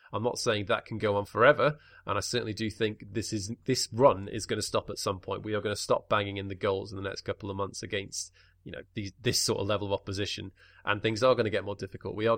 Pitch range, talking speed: 100-115 Hz, 285 wpm